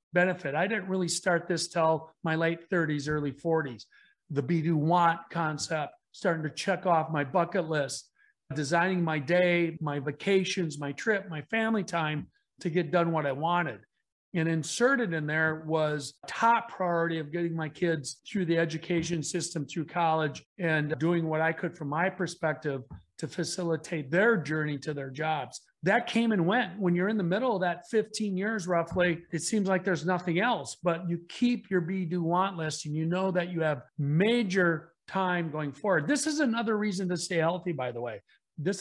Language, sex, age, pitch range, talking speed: English, male, 40-59, 155-190 Hz, 185 wpm